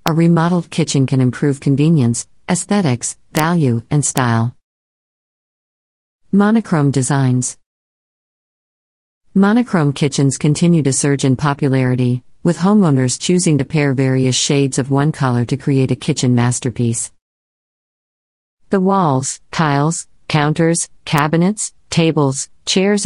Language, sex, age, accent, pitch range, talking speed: English, female, 50-69, American, 130-165 Hz, 105 wpm